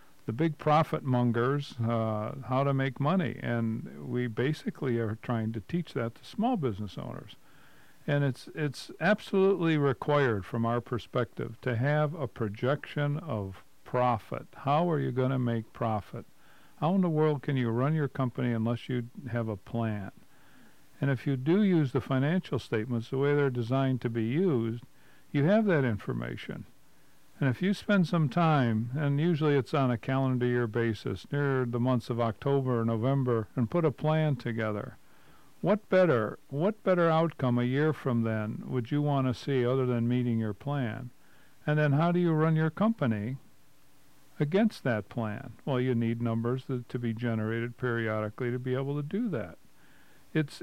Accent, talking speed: American, 175 wpm